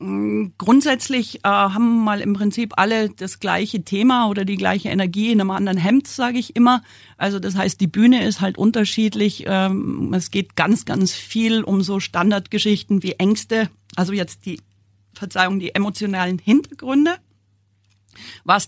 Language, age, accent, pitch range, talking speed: German, 40-59, German, 190-220 Hz, 155 wpm